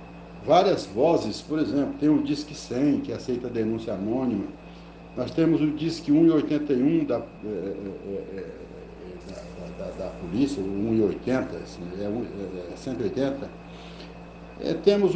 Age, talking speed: 60-79, 95 wpm